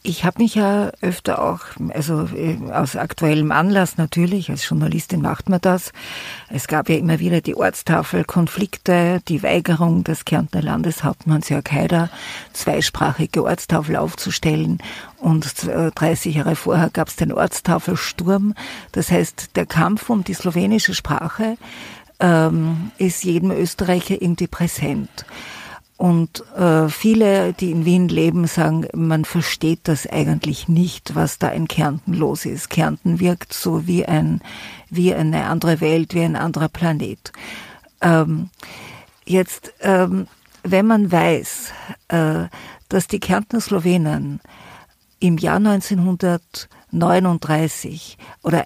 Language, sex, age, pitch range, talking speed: German, female, 50-69, 160-185 Hz, 125 wpm